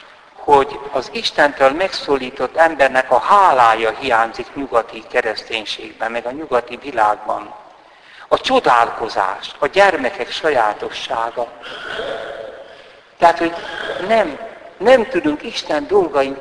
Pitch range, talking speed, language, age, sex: 135-210 Hz, 95 wpm, Hungarian, 60-79, male